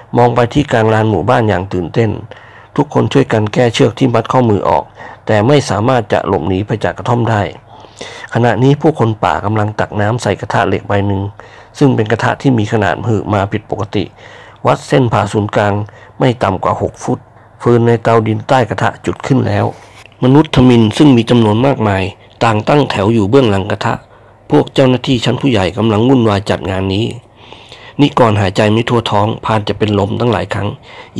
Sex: male